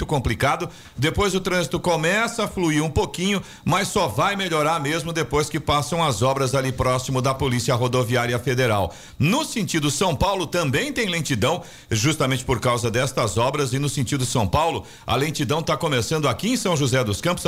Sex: male